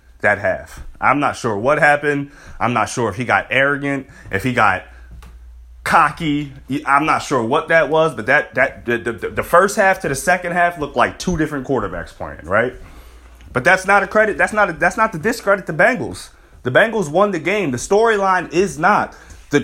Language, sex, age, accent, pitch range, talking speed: English, male, 30-49, American, 110-165 Hz, 200 wpm